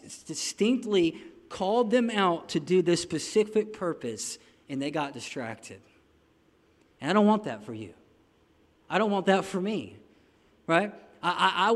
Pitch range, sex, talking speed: 160-215 Hz, male, 150 wpm